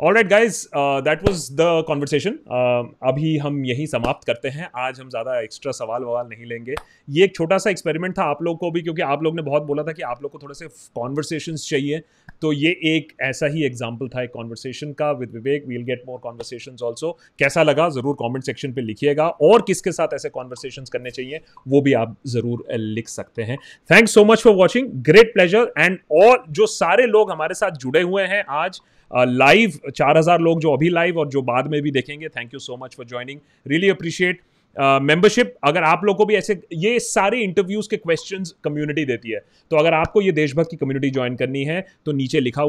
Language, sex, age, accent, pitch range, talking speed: Hindi, male, 30-49, native, 130-180 Hz, 190 wpm